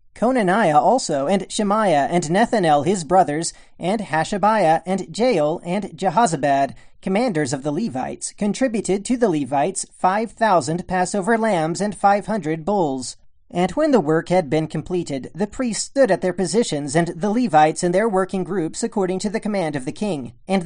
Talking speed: 170 wpm